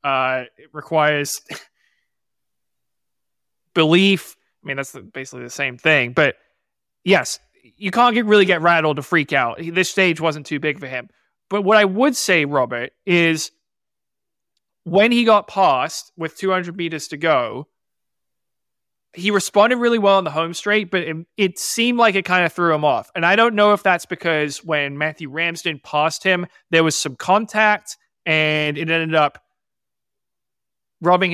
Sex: male